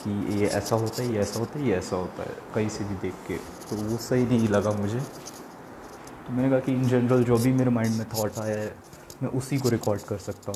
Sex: male